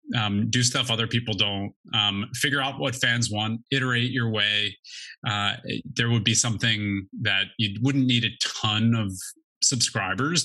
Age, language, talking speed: 20-39, English, 165 wpm